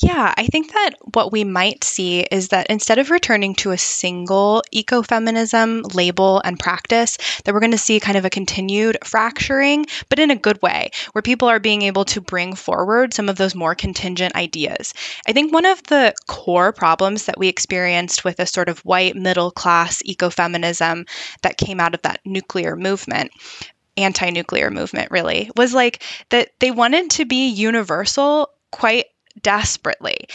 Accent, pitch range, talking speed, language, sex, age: American, 185-255 Hz, 170 wpm, English, female, 20-39